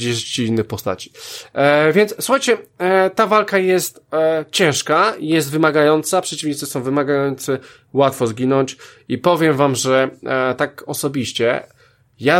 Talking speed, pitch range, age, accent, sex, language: 105 wpm, 125-165 Hz, 20-39, native, male, Polish